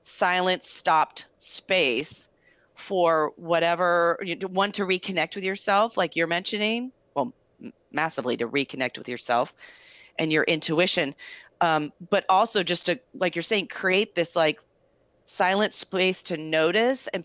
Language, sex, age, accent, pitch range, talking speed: English, female, 30-49, American, 155-195 Hz, 135 wpm